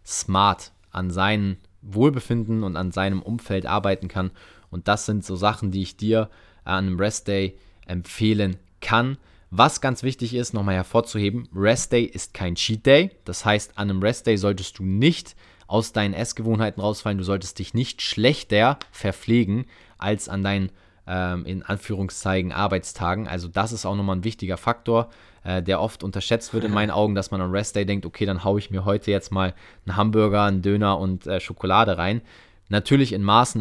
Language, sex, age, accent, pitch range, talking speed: German, male, 20-39, German, 95-110 Hz, 170 wpm